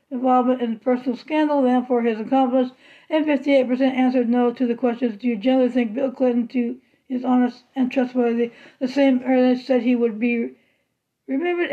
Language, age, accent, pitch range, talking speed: English, 60-79, American, 245-280 Hz, 170 wpm